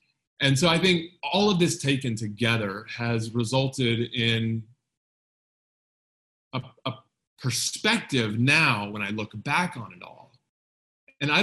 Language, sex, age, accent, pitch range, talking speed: English, male, 30-49, American, 115-160 Hz, 130 wpm